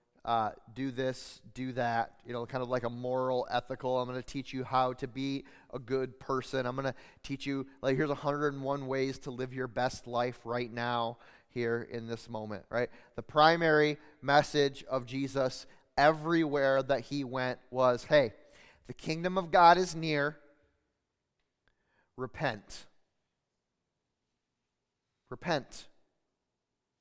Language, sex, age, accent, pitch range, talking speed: English, male, 30-49, American, 130-200 Hz, 140 wpm